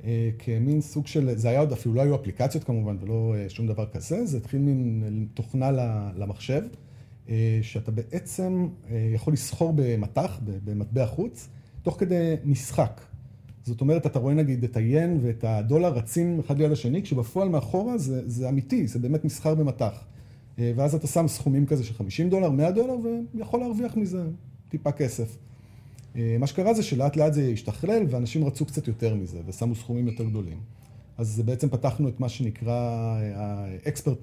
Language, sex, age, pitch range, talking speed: Hebrew, male, 40-59, 115-150 Hz, 160 wpm